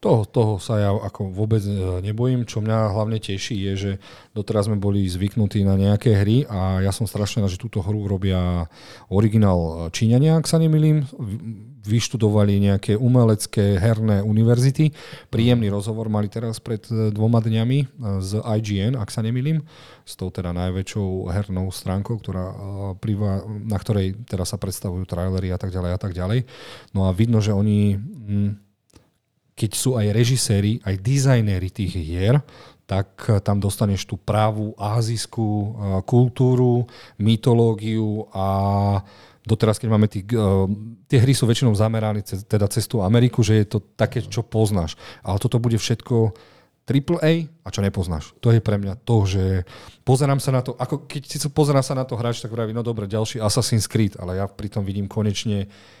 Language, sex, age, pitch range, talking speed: Slovak, male, 40-59, 100-120 Hz, 160 wpm